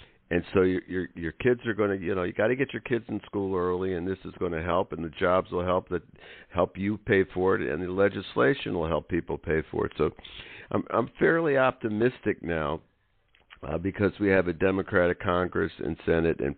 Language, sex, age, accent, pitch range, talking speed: English, male, 50-69, American, 85-105 Hz, 225 wpm